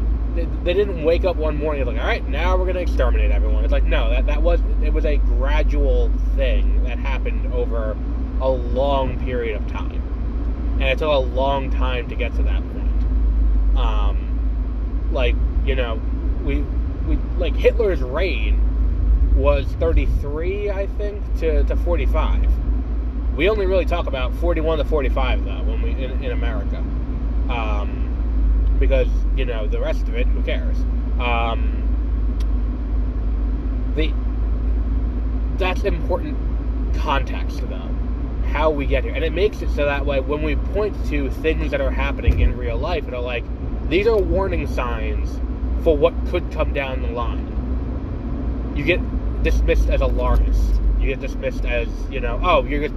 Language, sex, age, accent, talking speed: English, male, 20-39, American, 160 wpm